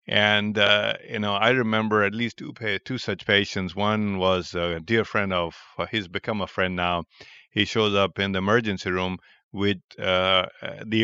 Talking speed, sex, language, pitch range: 185 wpm, male, English, 90-110 Hz